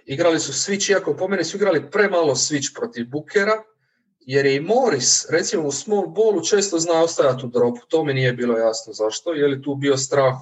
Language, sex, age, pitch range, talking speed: English, male, 30-49, 125-160 Hz, 205 wpm